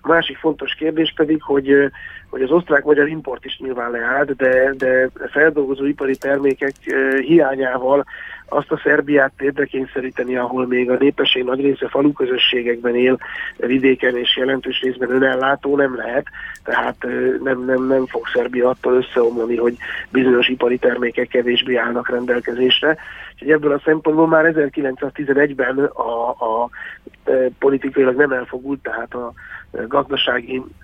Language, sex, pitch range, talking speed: Hungarian, male, 125-140 Hz, 125 wpm